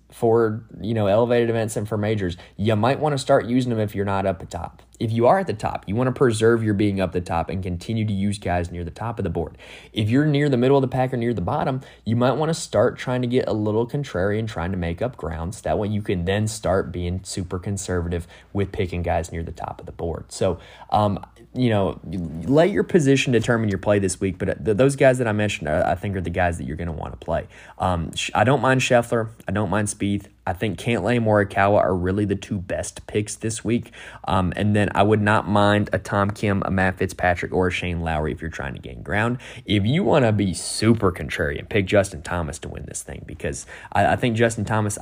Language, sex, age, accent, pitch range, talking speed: English, male, 20-39, American, 90-115 Hz, 250 wpm